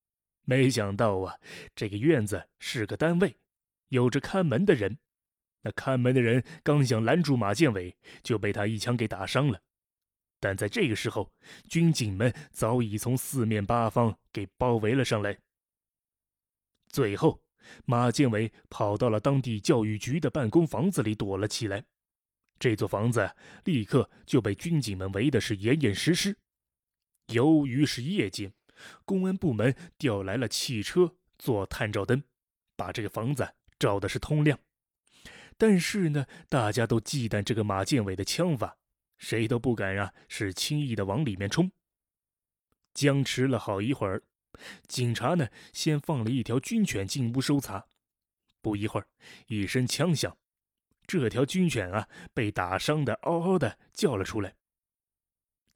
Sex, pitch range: male, 105-145 Hz